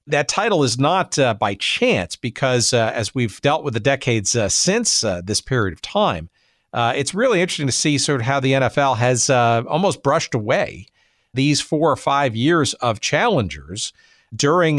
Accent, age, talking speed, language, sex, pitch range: American, 50-69, 185 wpm, English, male, 115-145 Hz